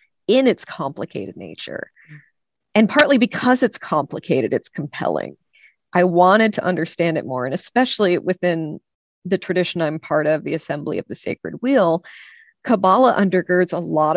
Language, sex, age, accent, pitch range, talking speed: English, female, 40-59, American, 165-195 Hz, 150 wpm